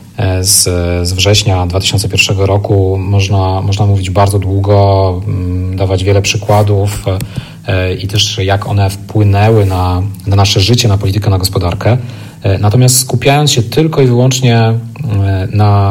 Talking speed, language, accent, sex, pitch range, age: 125 wpm, Polish, native, male, 95-115 Hz, 40-59